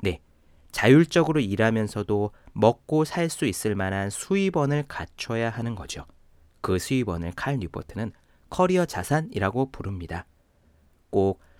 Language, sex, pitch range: Korean, male, 85-140 Hz